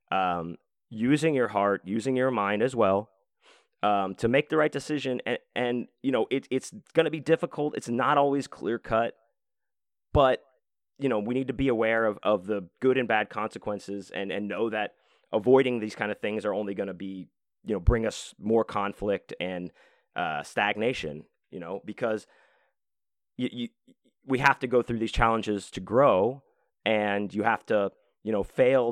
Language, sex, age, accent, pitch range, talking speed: English, male, 30-49, American, 100-130 Hz, 185 wpm